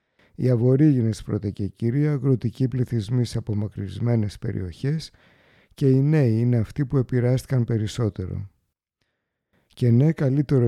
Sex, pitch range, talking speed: male, 115-140 Hz, 120 wpm